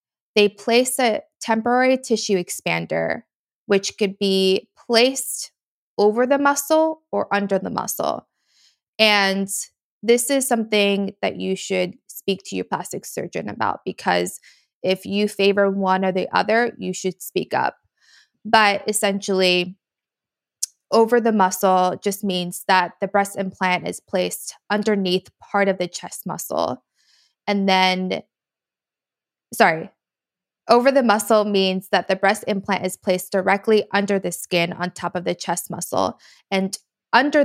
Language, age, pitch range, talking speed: English, 20-39, 185-215 Hz, 140 wpm